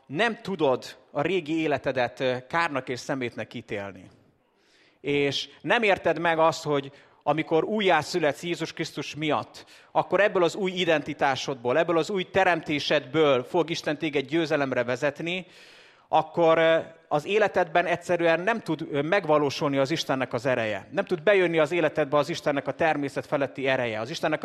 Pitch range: 140-175 Hz